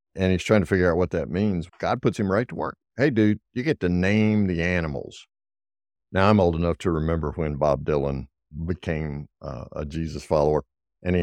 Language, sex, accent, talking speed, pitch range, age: English, male, American, 210 wpm, 75-100 Hz, 60-79